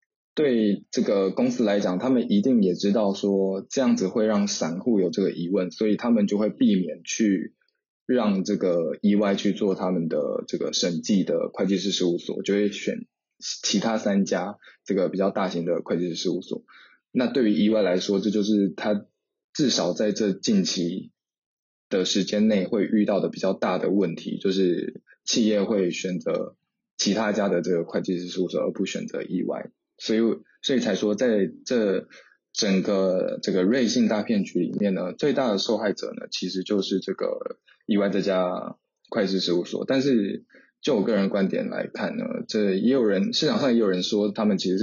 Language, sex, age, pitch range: English, male, 20-39, 95-110 Hz